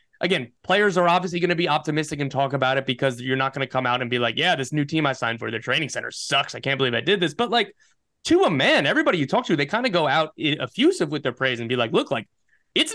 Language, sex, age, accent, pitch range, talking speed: English, male, 20-39, American, 130-175 Hz, 290 wpm